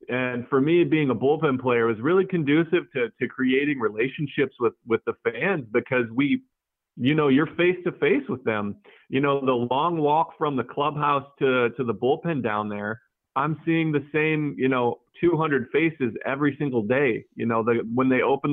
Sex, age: male, 40-59